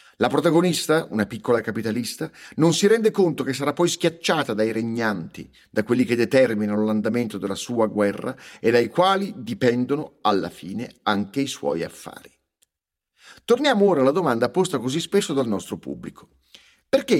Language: Italian